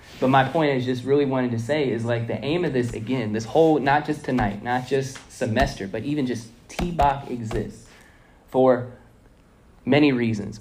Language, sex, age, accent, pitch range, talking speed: English, male, 10-29, American, 110-130 Hz, 180 wpm